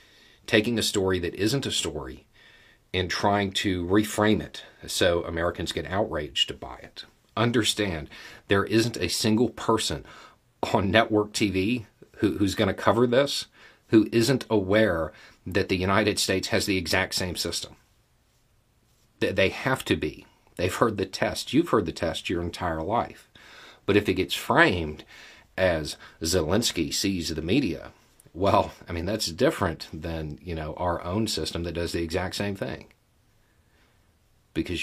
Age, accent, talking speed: 40-59, American, 150 wpm